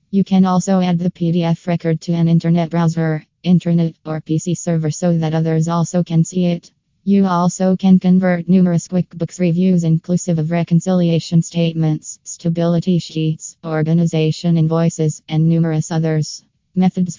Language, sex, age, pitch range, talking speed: English, female, 20-39, 165-180 Hz, 145 wpm